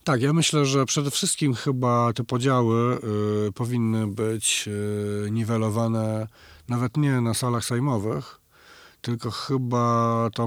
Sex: male